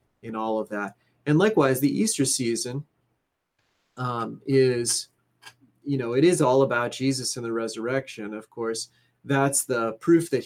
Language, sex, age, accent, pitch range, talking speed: English, male, 30-49, American, 115-145 Hz, 155 wpm